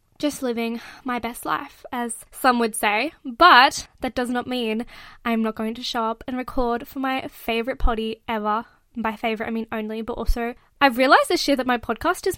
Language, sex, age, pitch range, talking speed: English, female, 10-29, 225-265 Hz, 205 wpm